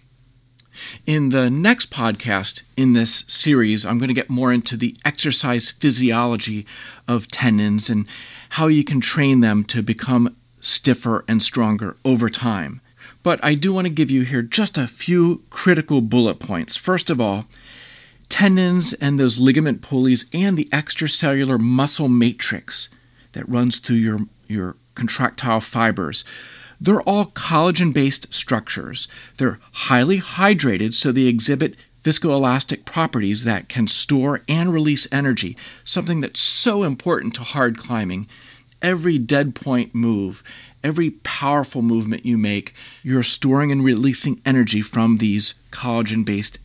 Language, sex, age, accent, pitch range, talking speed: English, male, 40-59, American, 115-150 Hz, 140 wpm